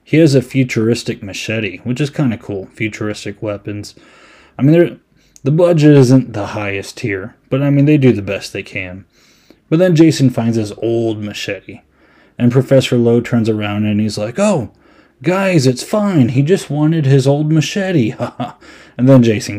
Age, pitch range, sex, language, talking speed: 20-39, 105-135 Hz, male, English, 175 wpm